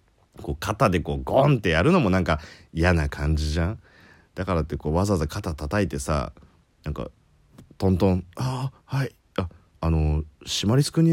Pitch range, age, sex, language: 80-115 Hz, 40-59, male, Japanese